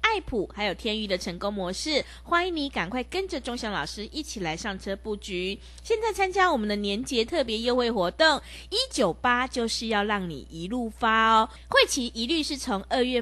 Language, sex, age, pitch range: Chinese, female, 20-39, 200-305 Hz